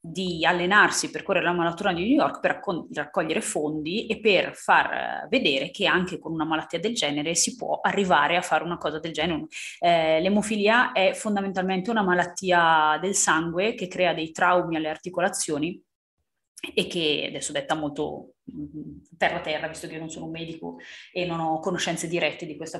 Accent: native